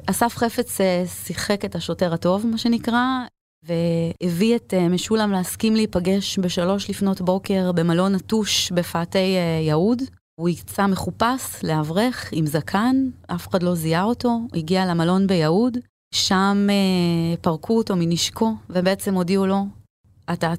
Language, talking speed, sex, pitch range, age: Hebrew, 120 wpm, female, 175-220 Hz, 30-49